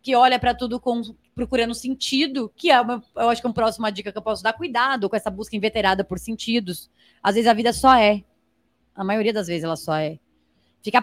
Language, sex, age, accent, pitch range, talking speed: Portuguese, female, 20-39, Brazilian, 210-285 Hz, 230 wpm